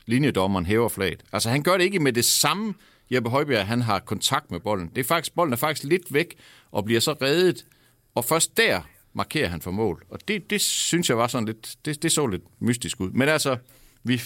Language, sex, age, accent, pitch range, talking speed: Danish, male, 60-79, native, 95-130 Hz, 230 wpm